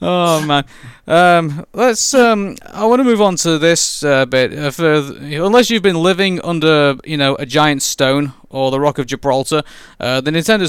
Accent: British